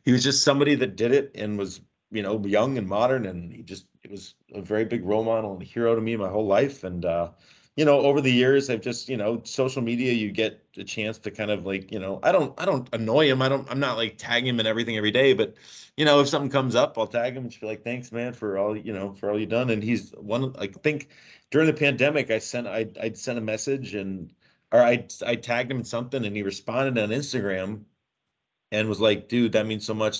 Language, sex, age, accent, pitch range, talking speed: English, male, 30-49, American, 105-130 Hz, 260 wpm